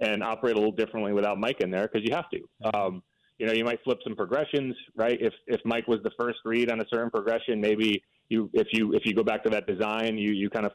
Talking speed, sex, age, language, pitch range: 270 wpm, male, 30-49, English, 110-135 Hz